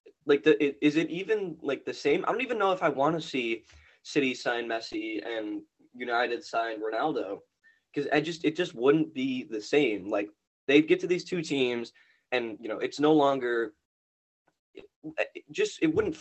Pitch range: 115-175 Hz